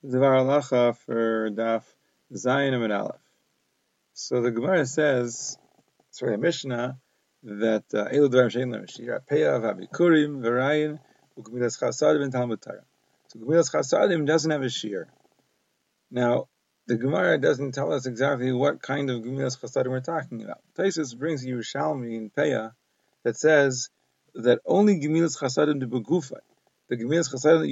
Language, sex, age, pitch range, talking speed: English, male, 40-59, 125-155 Hz, 145 wpm